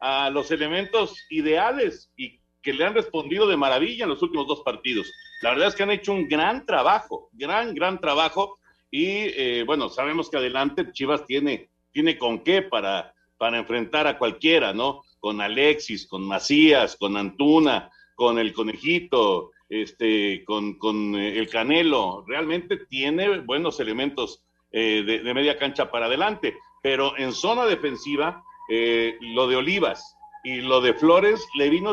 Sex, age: male, 50-69